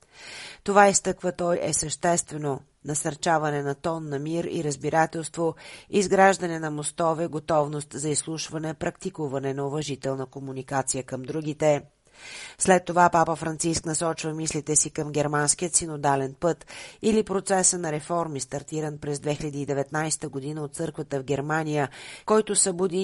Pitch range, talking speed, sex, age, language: 145-165 Hz, 130 wpm, female, 40-59, Bulgarian